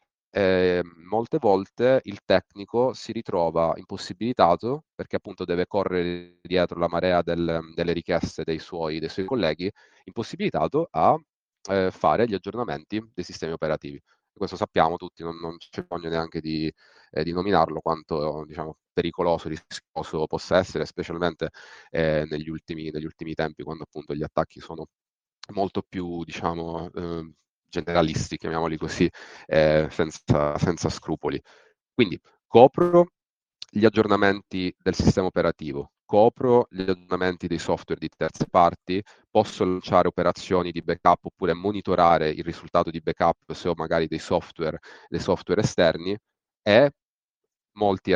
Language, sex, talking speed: Italian, male, 135 wpm